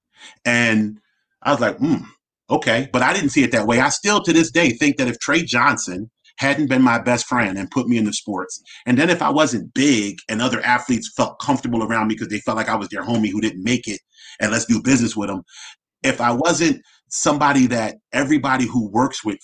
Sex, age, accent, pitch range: male, 30-49, American, 115-165 Hz